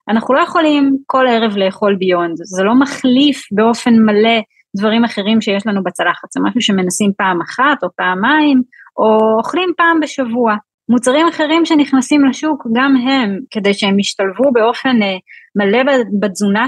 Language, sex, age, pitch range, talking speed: Hebrew, female, 20-39, 195-260 Hz, 145 wpm